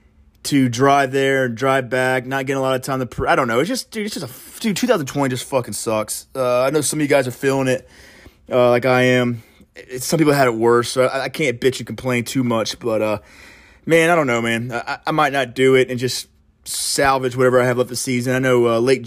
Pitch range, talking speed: 115-135 Hz, 265 wpm